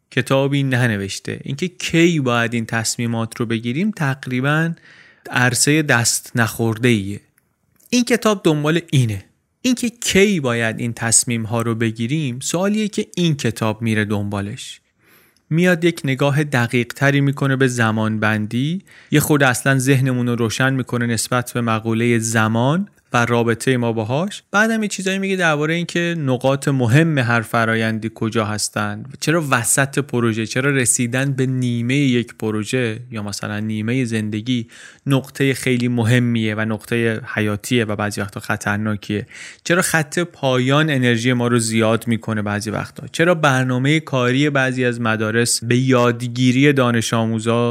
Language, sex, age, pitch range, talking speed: Persian, male, 30-49, 115-140 Hz, 140 wpm